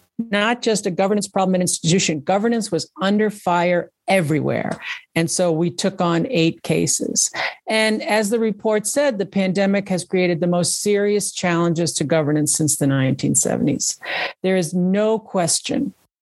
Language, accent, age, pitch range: English, American, 50-69, 170-210 Hz